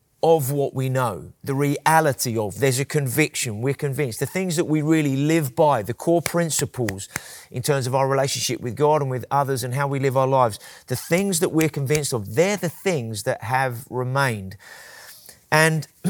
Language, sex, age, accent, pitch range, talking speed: English, male, 30-49, British, 120-150 Hz, 190 wpm